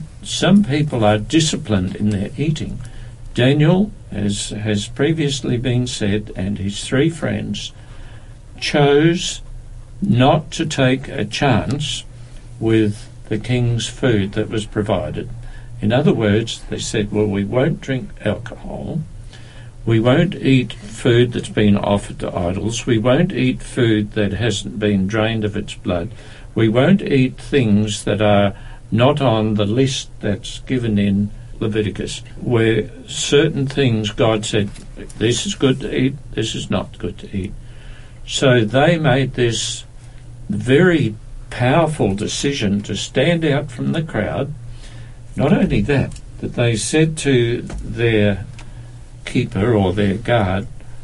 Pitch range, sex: 105-130 Hz, male